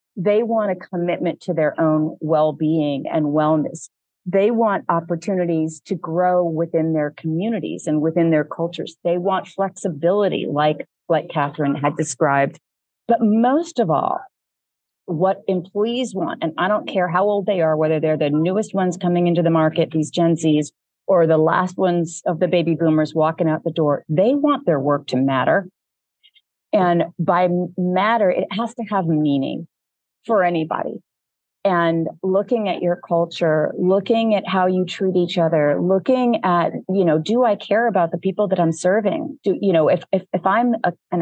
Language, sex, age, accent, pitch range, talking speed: English, female, 40-59, American, 160-210 Hz, 170 wpm